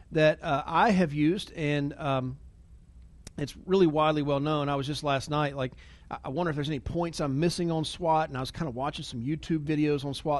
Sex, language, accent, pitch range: male, English, American, 140-185 Hz